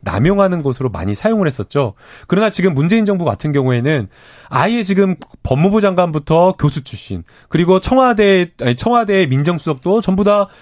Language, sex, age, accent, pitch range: Korean, male, 30-49, native, 130-185 Hz